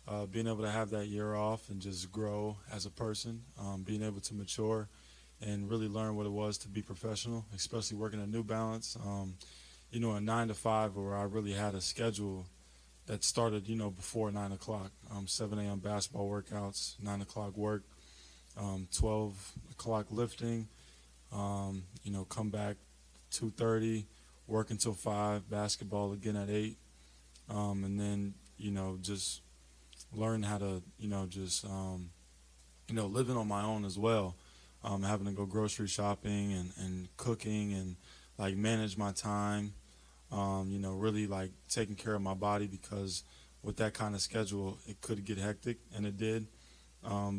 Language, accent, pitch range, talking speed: English, American, 95-110 Hz, 170 wpm